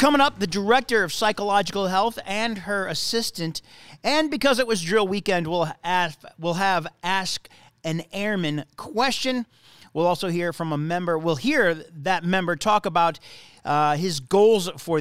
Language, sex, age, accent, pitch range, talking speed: English, male, 40-59, American, 160-220 Hz, 160 wpm